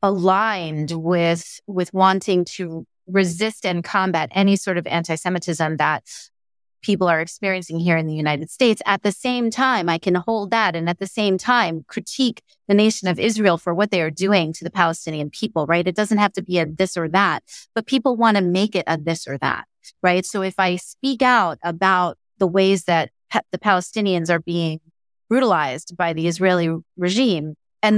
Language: English